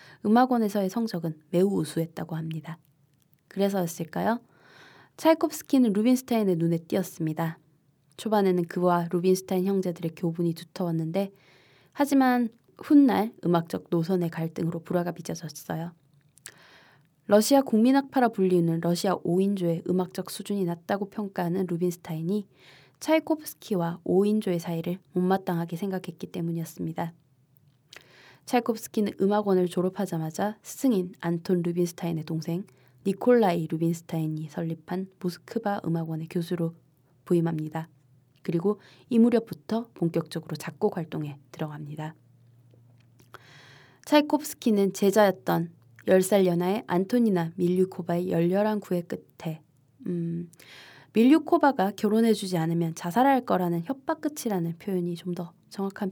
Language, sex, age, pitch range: Korean, female, 20-39, 165-205 Hz